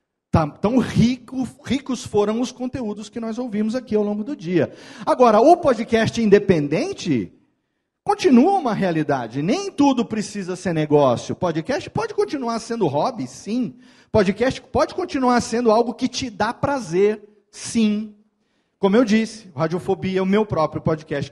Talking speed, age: 145 wpm, 40-59